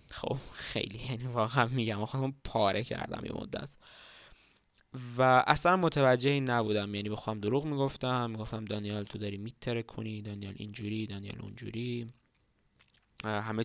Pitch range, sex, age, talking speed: 110-130 Hz, male, 20-39, 140 wpm